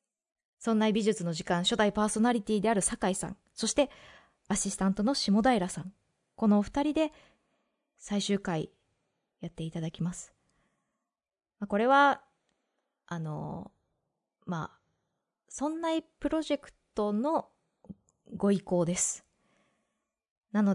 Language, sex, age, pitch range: Japanese, female, 20-39, 180-230 Hz